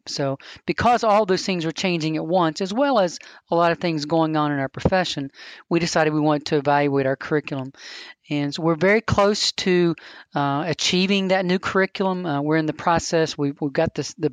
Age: 40-59